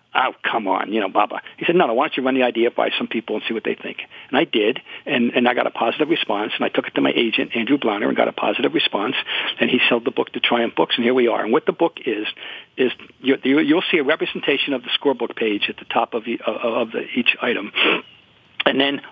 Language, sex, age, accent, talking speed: English, male, 50-69, American, 270 wpm